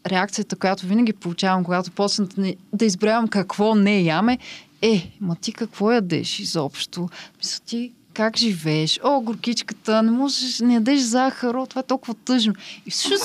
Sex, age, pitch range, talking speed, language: female, 20-39, 175-235 Hz, 165 wpm, Bulgarian